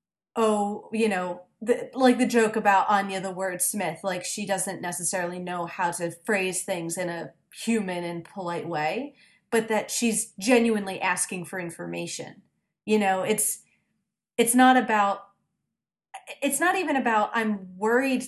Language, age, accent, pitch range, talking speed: English, 30-49, American, 180-220 Hz, 150 wpm